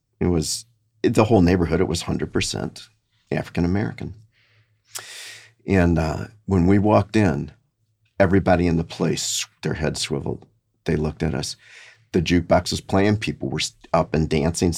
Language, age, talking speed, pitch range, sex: English, 50-69, 150 wpm, 80-110 Hz, male